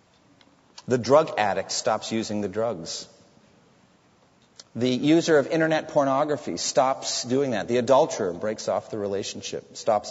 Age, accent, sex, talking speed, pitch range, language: 40-59, American, male, 130 wpm, 110-155 Hz, English